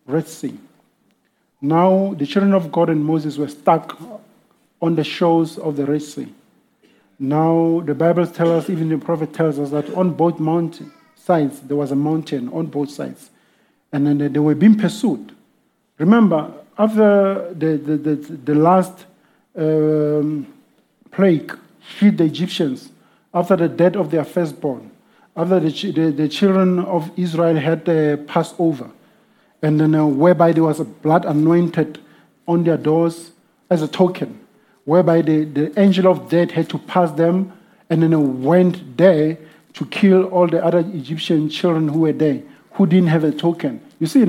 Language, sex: English, male